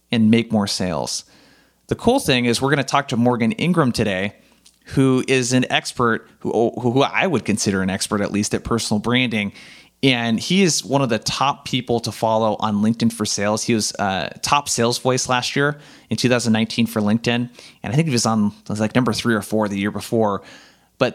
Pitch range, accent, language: 105-130 Hz, American, English